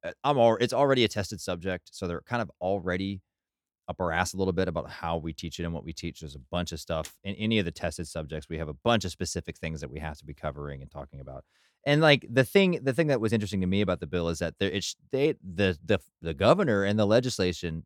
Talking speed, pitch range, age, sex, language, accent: 270 wpm, 85-105 Hz, 30-49, male, English, American